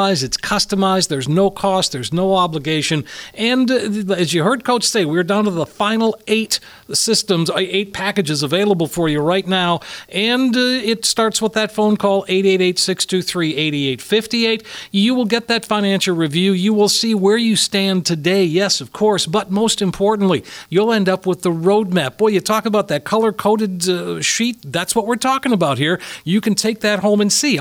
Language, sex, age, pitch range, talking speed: English, male, 50-69, 175-215 Hz, 180 wpm